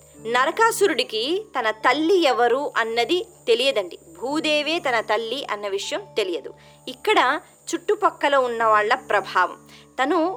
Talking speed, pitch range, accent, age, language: 100 wpm, 210-345 Hz, native, 20-39, Telugu